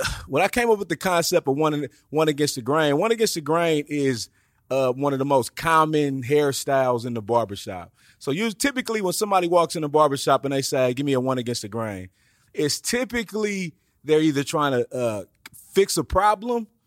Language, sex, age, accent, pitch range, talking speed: English, male, 30-49, American, 125-165 Hz, 205 wpm